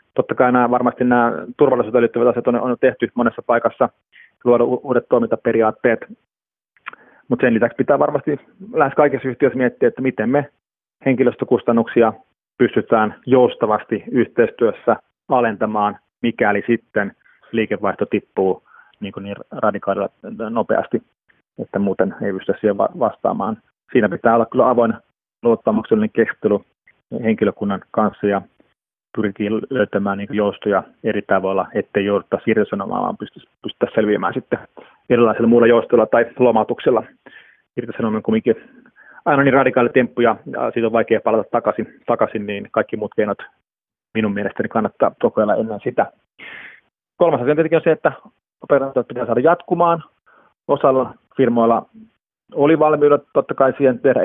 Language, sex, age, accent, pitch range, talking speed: Finnish, male, 30-49, native, 105-130 Hz, 130 wpm